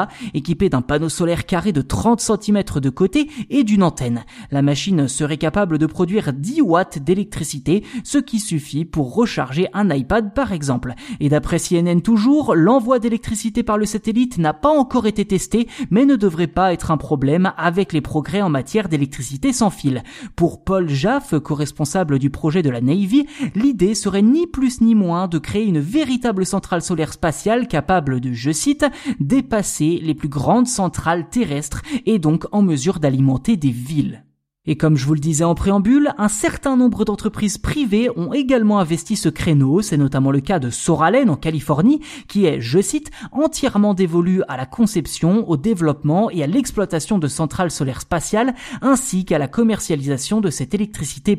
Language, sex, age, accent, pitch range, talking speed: French, male, 20-39, French, 155-235 Hz, 175 wpm